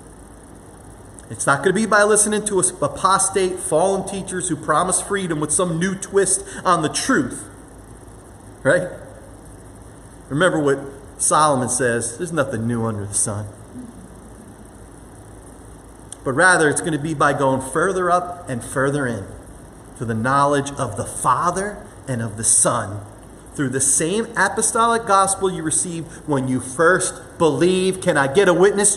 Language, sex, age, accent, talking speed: English, male, 30-49, American, 145 wpm